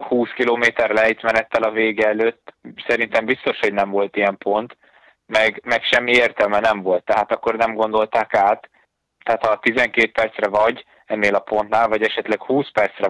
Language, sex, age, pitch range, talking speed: Hungarian, male, 20-39, 100-110 Hz, 165 wpm